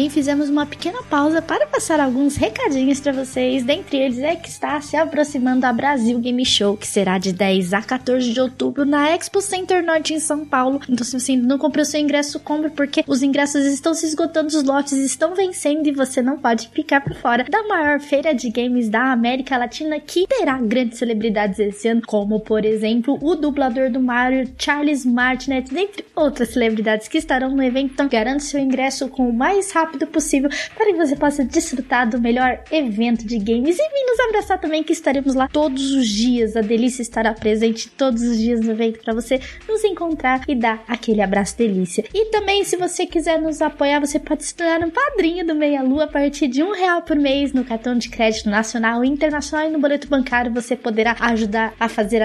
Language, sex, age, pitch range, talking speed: Portuguese, female, 10-29, 235-305 Hz, 205 wpm